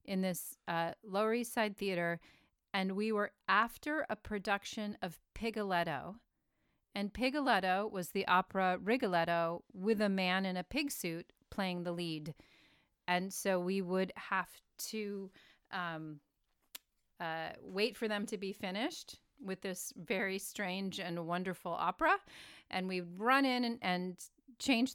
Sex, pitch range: female, 175-215 Hz